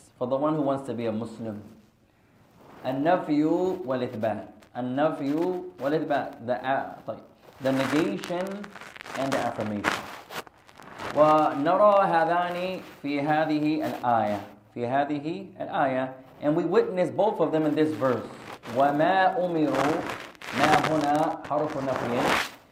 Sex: male